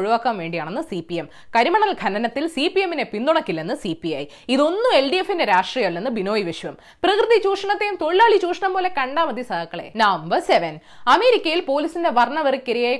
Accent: native